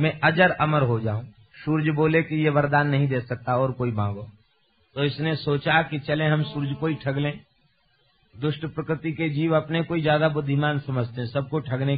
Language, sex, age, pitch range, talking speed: Hindi, male, 50-69, 140-180 Hz, 195 wpm